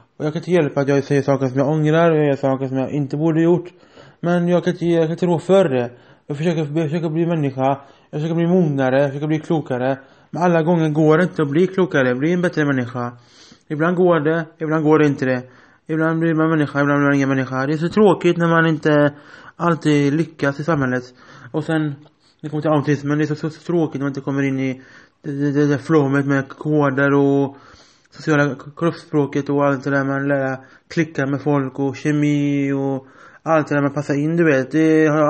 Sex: male